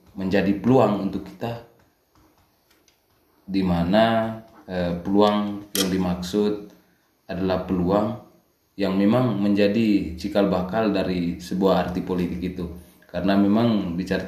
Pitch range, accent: 90-100 Hz, native